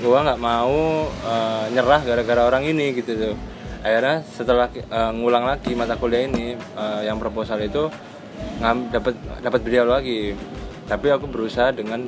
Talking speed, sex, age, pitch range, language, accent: 160 wpm, male, 20-39, 115-130 Hz, Indonesian, native